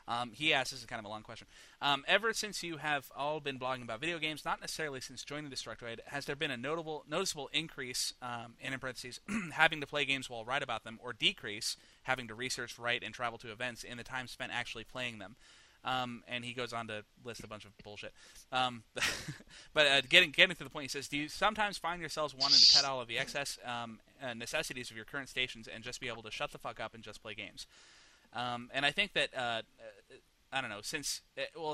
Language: English